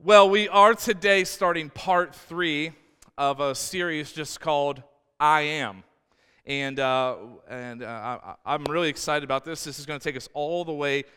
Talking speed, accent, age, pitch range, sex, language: 170 wpm, American, 40-59, 155-210 Hz, male, English